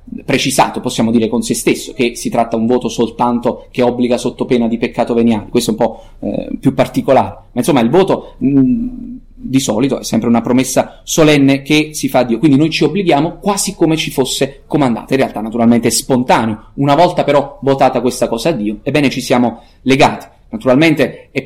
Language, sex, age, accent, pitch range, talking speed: Italian, male, 20-39, native, 115-140 Hz, 200 wpm